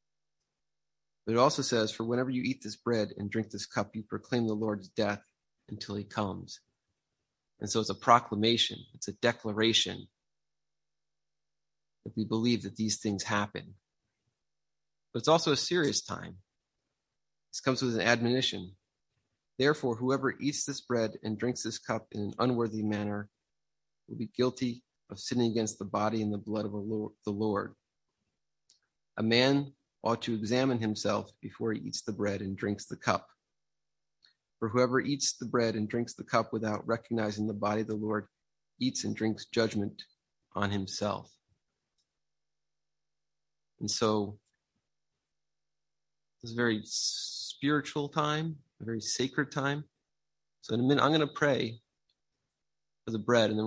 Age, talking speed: 30-49, 155 wpm